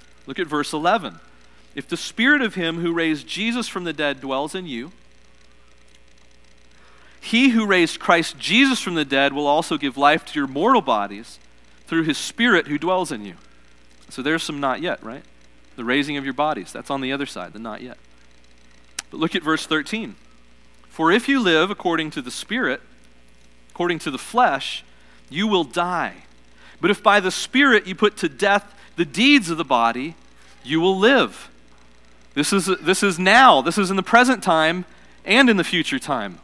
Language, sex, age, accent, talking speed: English, male, 40-59, American, 185 wpm